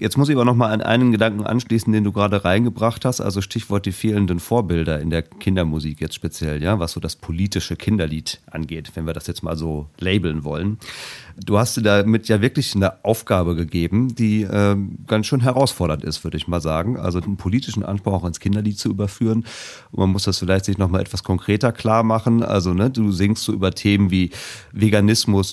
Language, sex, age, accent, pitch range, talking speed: German, male, 30-49, German, 90-110 Hz, 205 wpm